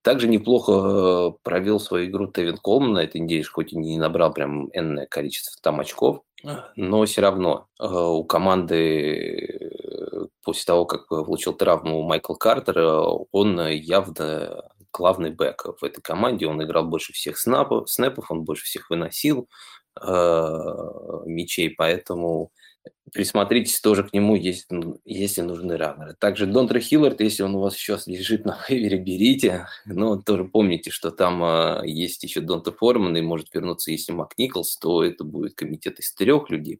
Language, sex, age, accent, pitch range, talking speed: Russian, male, 20-39, native, 85-105 Hz, 150 wpm